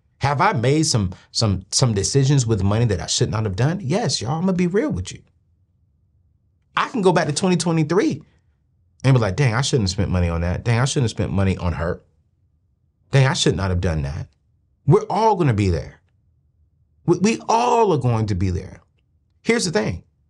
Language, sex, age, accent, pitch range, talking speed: English, male, 30-49, American, 85-130 Hz, 215 wpm